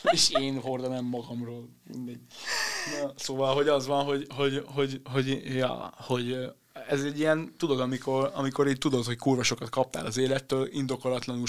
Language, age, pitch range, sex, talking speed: Hungarian, 20-39, 120-140 Hz, male, 145 wpm